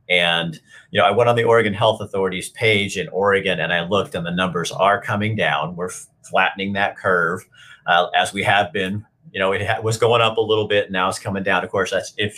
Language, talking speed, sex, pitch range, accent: English, 240 wpm, male, 95-120 Hz, American